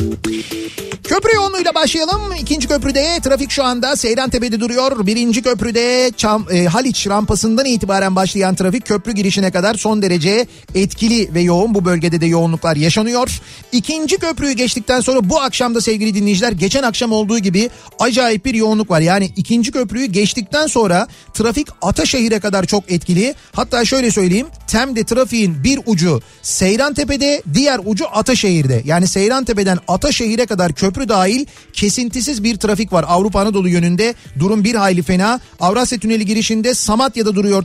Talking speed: 145 wpm